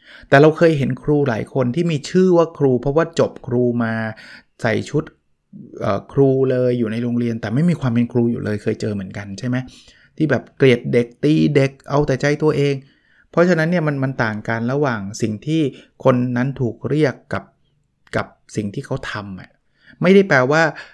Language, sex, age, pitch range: Thai, male, 20-39, 115-145 Hz